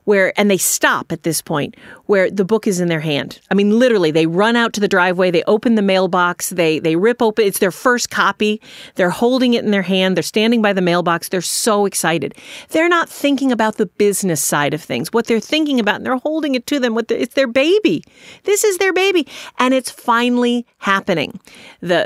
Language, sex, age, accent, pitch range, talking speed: English, female, 40-59, American, 190-255 Hz, 225 wpm